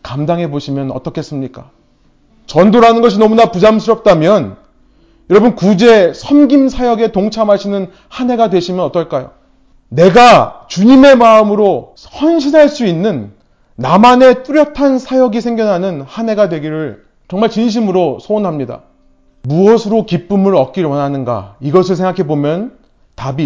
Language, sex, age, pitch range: Korean, male, 30-49, 160-220 Hz